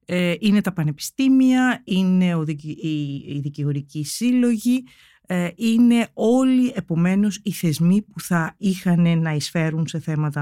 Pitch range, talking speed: 145-185 Hz, 125 wpm